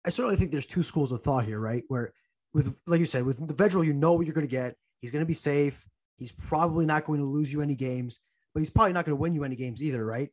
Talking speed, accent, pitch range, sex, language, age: 295 wpm, American, 125-150 Hz, male, English, 20-39